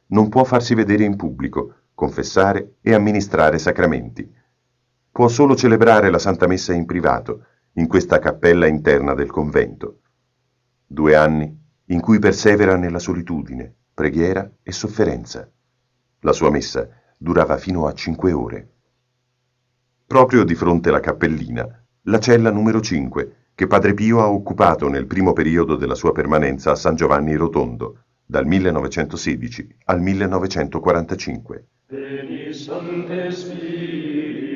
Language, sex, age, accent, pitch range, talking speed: Italian, male, 50-69, native, 90-140 Hz, 120 wpm